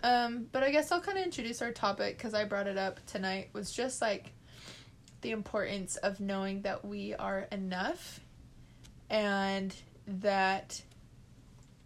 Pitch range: 190-230 Hz